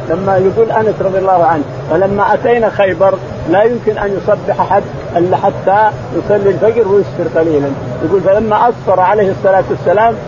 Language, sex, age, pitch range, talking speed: Arabic, male, 50-69, 160-205 Hz, 150 wpm